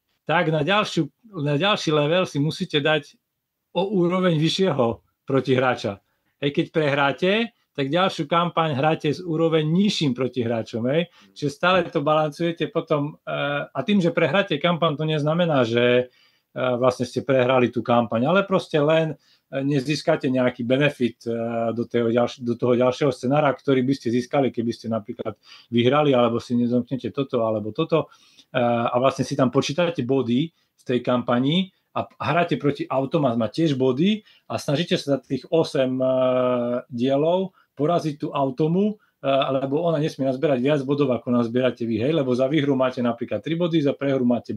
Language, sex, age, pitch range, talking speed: Slovak, male, 40-59, 125-165 Hz, 150 wpm